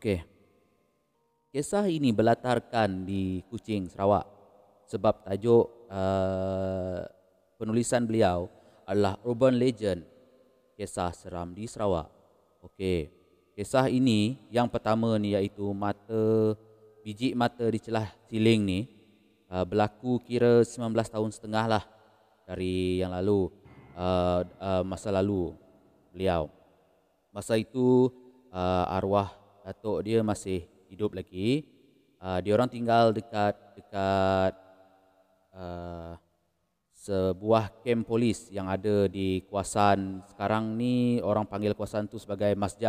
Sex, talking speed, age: male, 110 wpm, 30-49